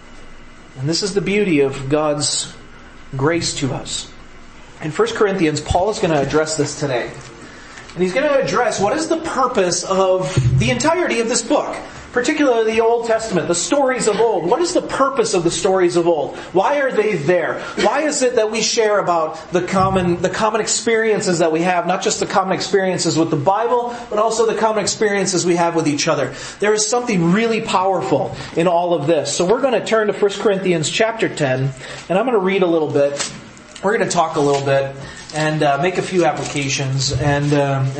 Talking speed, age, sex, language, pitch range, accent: 205 wpm, 40-59, male, English, 145-210 Hz, American